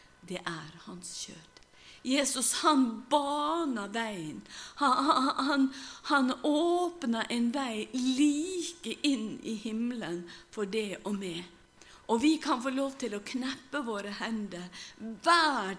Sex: female